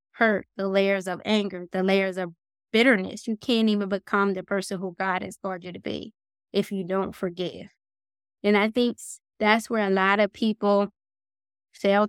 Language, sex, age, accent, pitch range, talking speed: English, female, 20-39, American, 195-220 Hz, 180 wpm